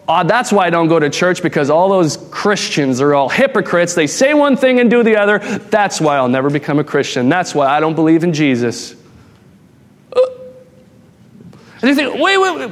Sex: male